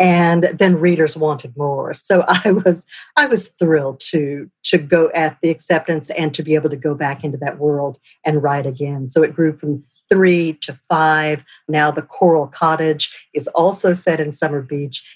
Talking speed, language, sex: 185 wpm, English, female